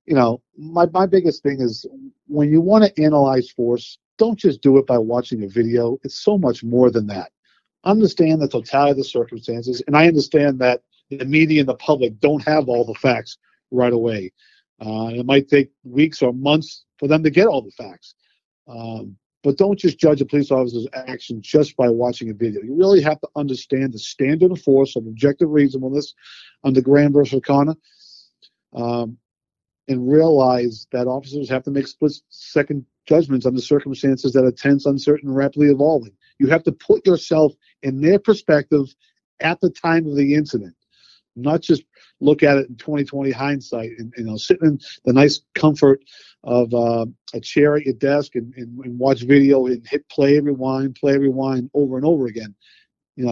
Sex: male